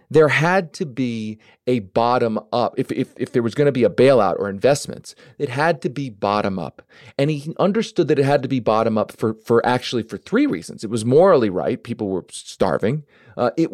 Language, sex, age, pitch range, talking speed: English, male, 40-59, 115-160 Hz, 205 wpm